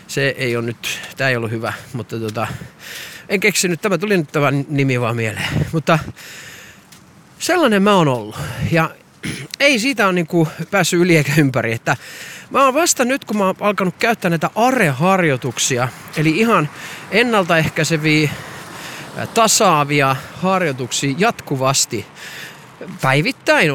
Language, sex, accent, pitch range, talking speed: Finnish, male, native, 140-190 Hz, 130 wpm